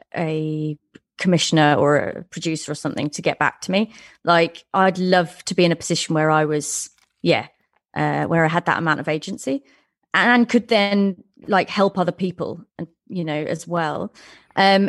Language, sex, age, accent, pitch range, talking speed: English, female, 30-49, British, 180-230 Hz, 180 wpm